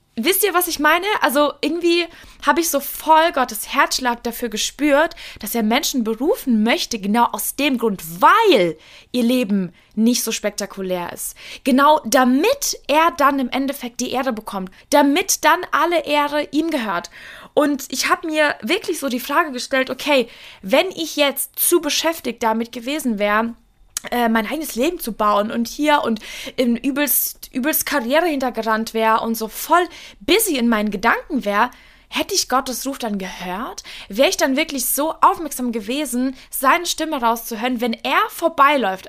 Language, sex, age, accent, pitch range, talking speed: German, female, 20-39, German, 230-300 Hz, 160 wpm